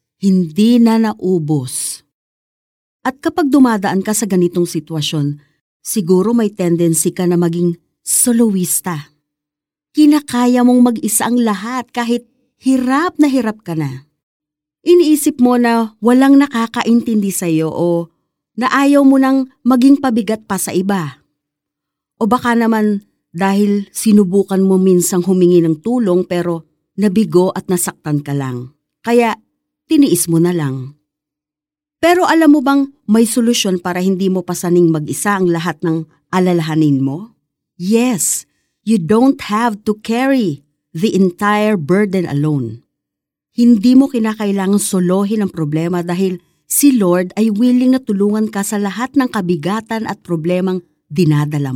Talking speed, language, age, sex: 130 wpm, Filipino, 40-59, female